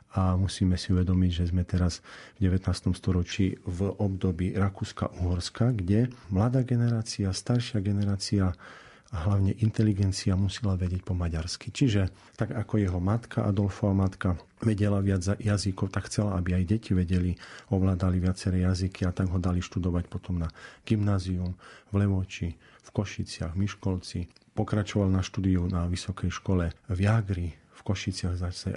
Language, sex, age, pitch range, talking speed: Slovak, male, 40-59, 90-105 Hz, 140 wpm